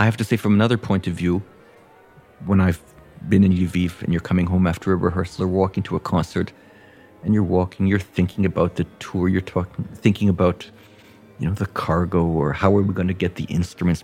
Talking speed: 220 wpm